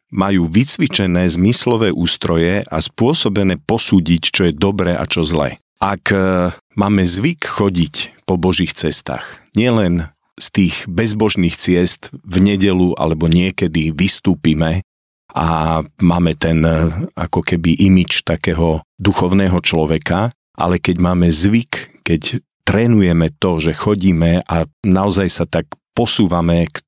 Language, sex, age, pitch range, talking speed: Slovak, male, 40-59, 85-100 Hz, 120 wpm